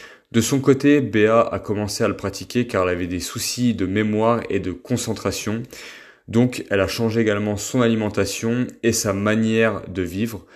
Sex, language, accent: male, French, French